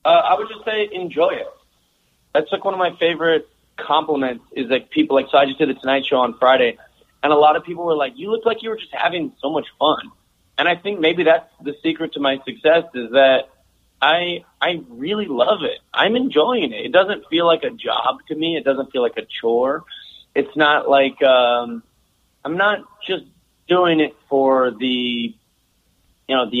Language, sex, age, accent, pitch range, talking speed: English, male, 30-49, American, 130-165 Hz, 210 wpm